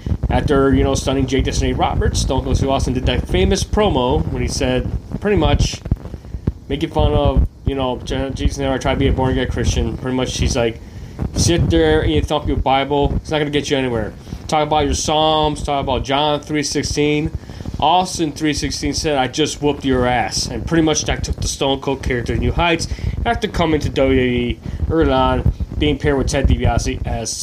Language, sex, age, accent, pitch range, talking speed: English, male, 20-39, American, 115-150 Hz, 205 wpm